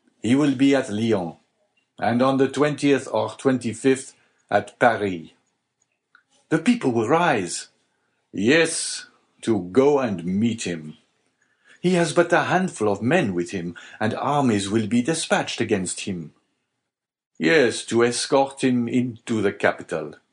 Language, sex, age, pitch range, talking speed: English, male, 50-69, 110-145 Hz, 135 wpm